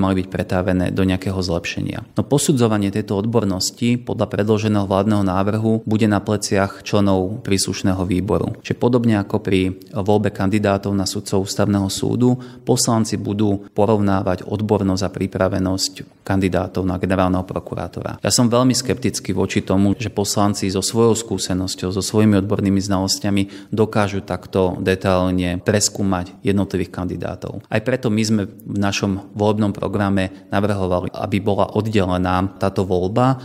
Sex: male